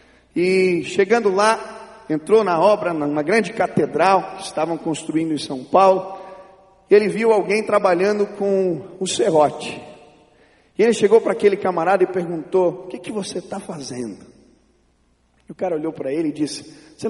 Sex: male